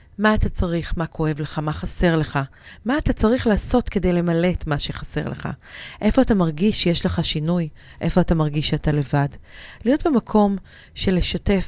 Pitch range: 160-200 Hz